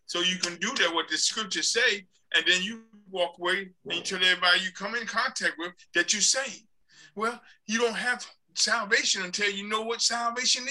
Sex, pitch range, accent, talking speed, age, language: male, 185-245 Hz, American, 200 wpm, 50-69, English